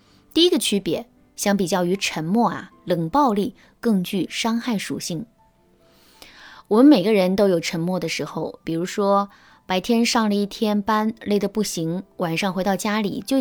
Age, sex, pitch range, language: 20-39, female, 175-240 Hz, Chinese